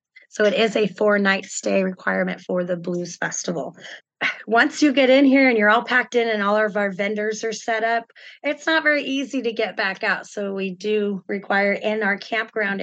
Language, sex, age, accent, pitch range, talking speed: English, female, 20-39, American, 195-235 Hz, 205 wpm